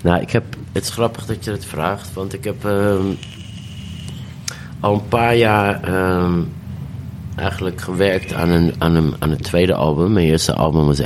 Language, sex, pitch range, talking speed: Dutch, male, 85-105 Hz, 180 wpm